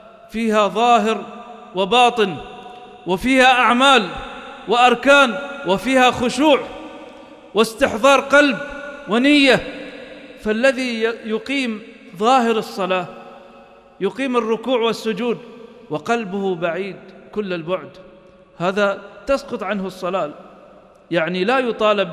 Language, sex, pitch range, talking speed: English, male, 185-245 Hz, 80 wpm